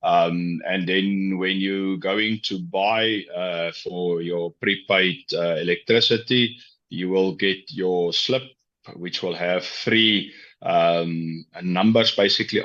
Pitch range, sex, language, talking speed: 85-100 Hz, male, English, 115 wpm